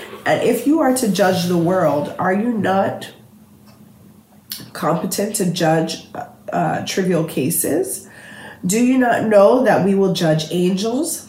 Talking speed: 140 wpm